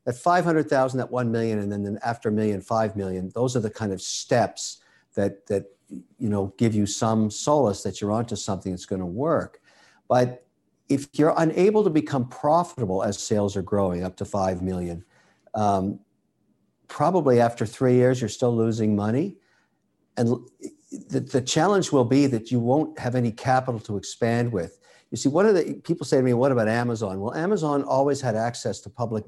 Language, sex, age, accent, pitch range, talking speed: English, male, 60-79, American, 105-130 Hz, 190 wpm